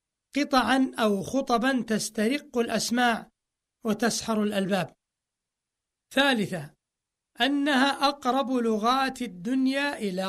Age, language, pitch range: 60-79, Arabic, 210-255 Hz